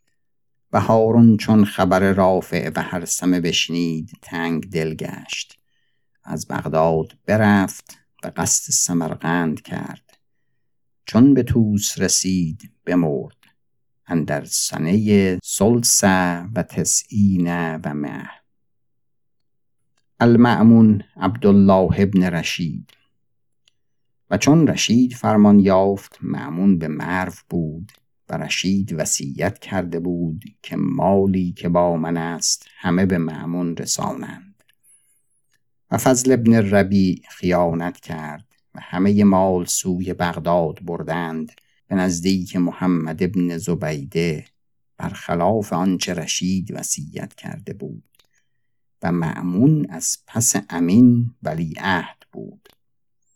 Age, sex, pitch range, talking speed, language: 50-69, male, 85-105 Hz, 100 wpm, Persian